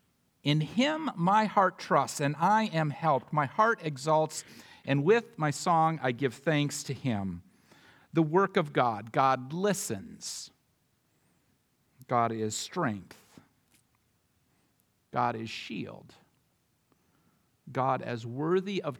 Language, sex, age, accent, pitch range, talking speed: English, male, 50-69, American, 150-230 Hz, 115 wpm